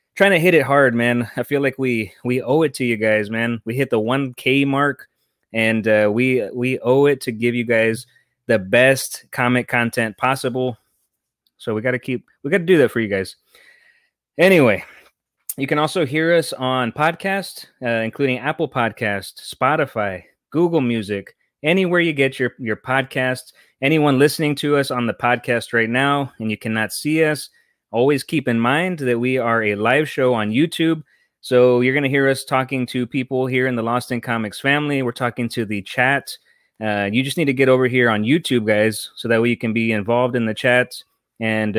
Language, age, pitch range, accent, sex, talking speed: English, 20-39, 110-140 Hz, American, male, 200 wpm